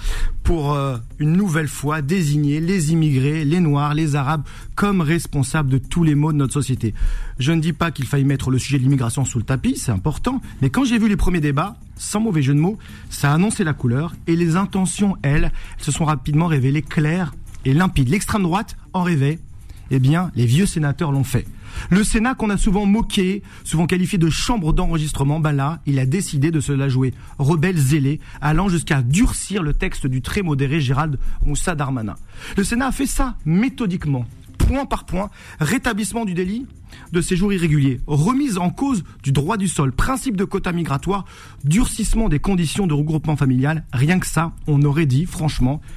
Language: French